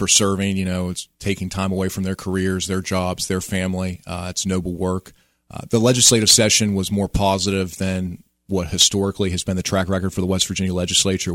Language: English